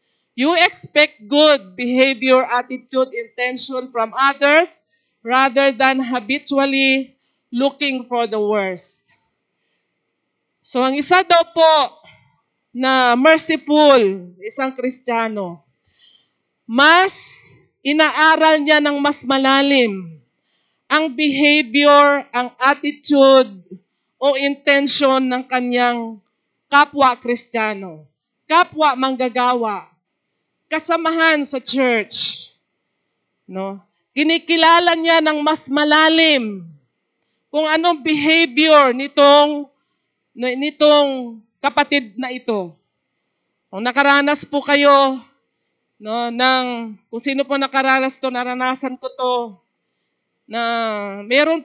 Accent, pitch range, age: Filipino, 245-300 Hz, 40-59